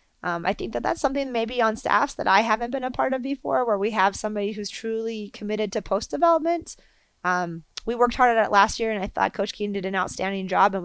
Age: 20-39